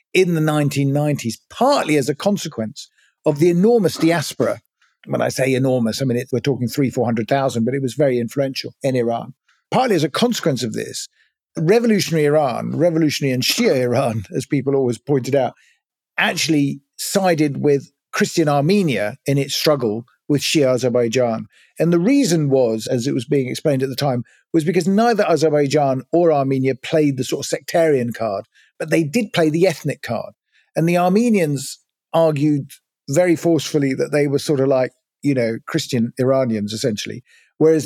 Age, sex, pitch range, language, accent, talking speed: 50-69, male, 125-160 Hz, English, British, 170 wpm